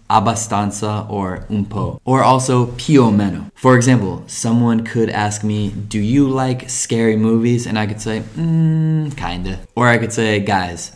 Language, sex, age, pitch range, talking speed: Italian, male, 20-39, 100-130 Hz, 170 wpm